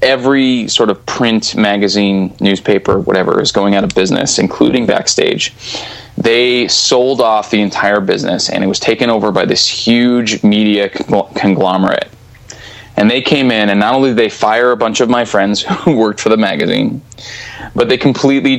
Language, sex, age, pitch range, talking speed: English, male, 20-39, 100-125 Hz, 170 wpm